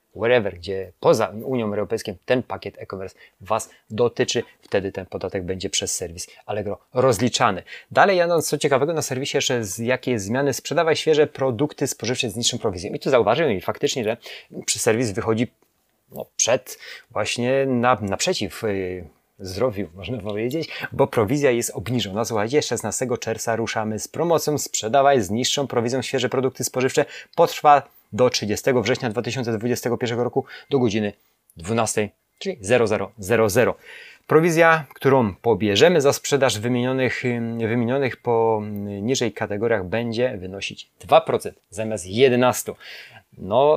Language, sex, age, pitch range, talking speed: Polish, male, 30-49, 105-130 Hz, 135 wpm